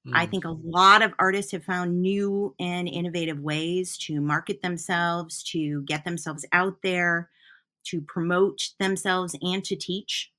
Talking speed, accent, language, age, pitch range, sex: 150 wpm, American, English, 30-49, 155-185 Hz, female